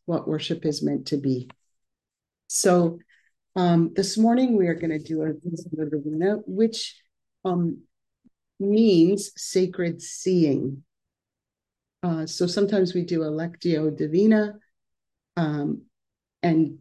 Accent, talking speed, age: American, 110 wpm, 40-59